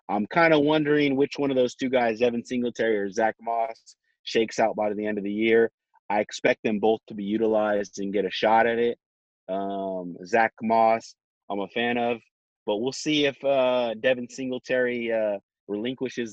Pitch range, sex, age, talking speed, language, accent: 95-115 Hz, male, 30-49, 190 wpm, English, American